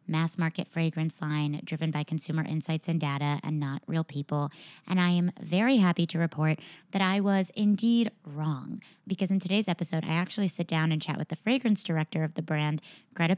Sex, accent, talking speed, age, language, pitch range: female, American, 195 wpm, 30-49, English, 160-195 Hz